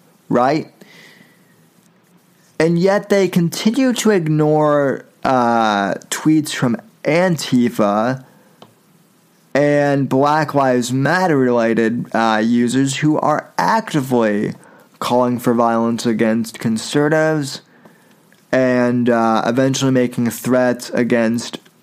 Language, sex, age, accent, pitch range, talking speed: English, male, 20-39, American, 115-155 Hz, 90 wpm